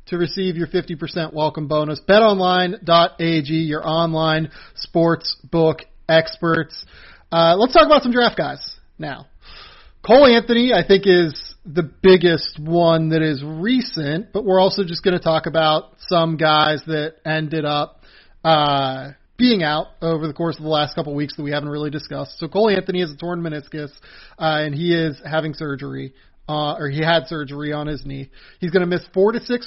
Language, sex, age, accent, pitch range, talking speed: English, male, 30-49, American, 150-170 Hz, 180 wpm